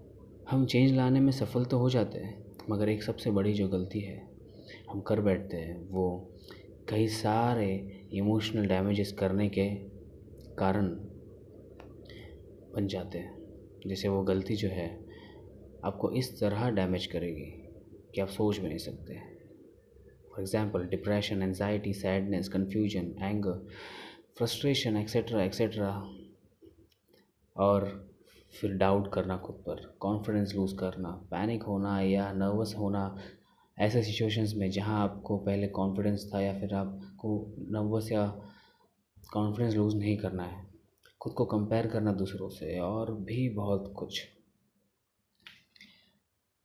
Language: Hindi